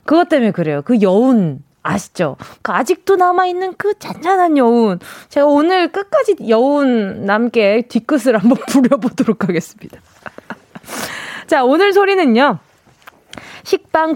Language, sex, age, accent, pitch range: Korean, female, 20-39, native, 220-350 Hz